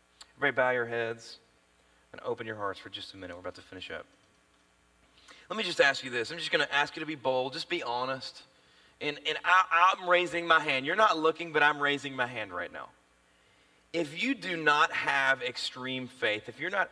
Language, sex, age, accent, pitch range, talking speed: English, male, 30-49, American, 100-155 Hz, 215 wpm